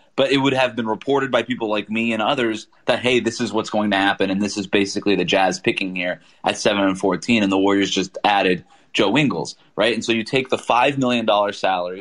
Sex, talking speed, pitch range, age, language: male, 235 wpm, 100-125 Hz, 20-39, English